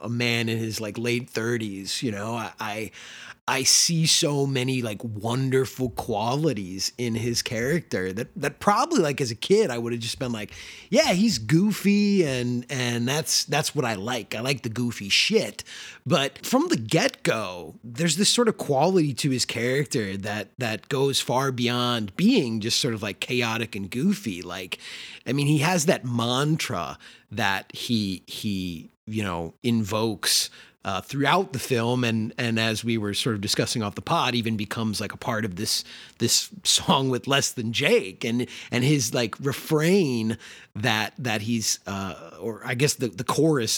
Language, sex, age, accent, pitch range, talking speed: English, male, 30-49, American, 110-140 Hz, 175 wpm